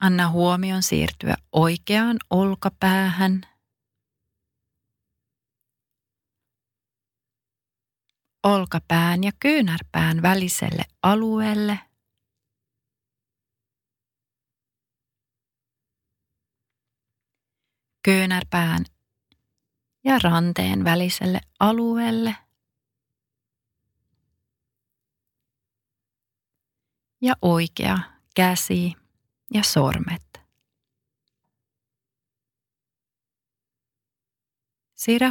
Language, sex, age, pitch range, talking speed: Finnish, female, 30-49, 115-185 Hz, 30 wpm